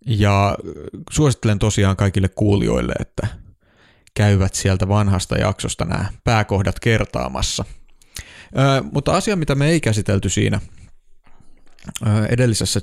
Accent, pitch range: native, 100-120 Hz